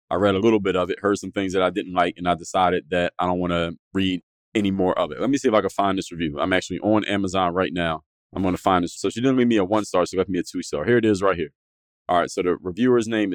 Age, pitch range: 30-49, 90-120 Hz